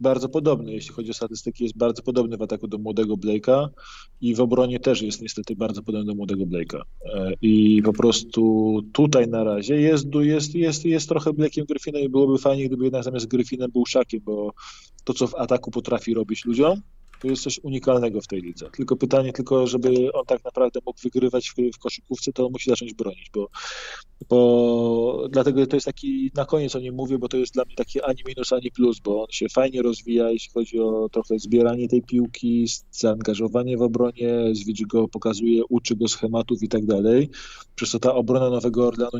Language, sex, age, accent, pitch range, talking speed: Polish, male, 20-39, native, 110-130 Hz, 195 wpm